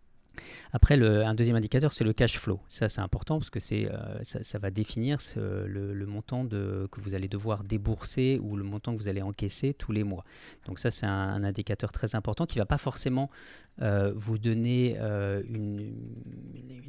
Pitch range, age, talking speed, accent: 100-125 Hz, 40-59, 205 wpm, French